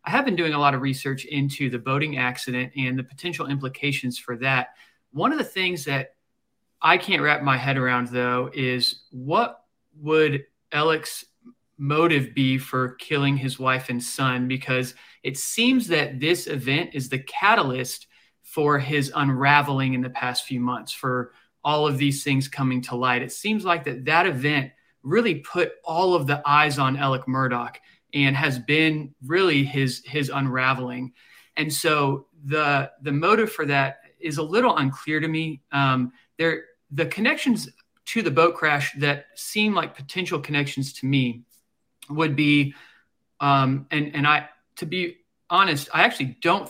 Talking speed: 165 wpm